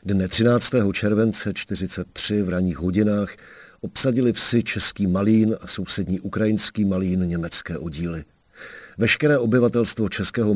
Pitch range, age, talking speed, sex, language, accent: 90-105 Hz, 50-69, 115 wpm, male, Czech, native